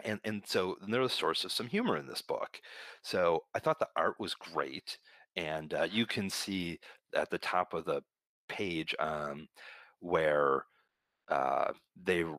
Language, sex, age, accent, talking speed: English, male, 30-49, American, 175 wpm